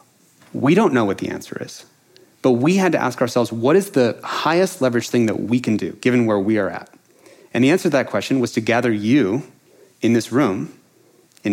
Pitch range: 110-135 Hz